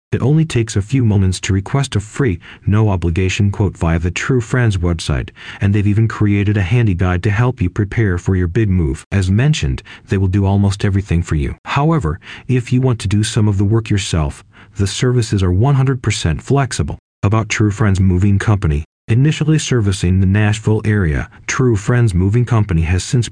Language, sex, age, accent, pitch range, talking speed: English, male, 40-59, American, 90-115 Hz, 190 wpm